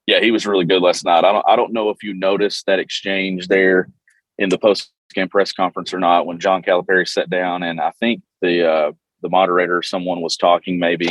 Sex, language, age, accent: male, English, 30-49, American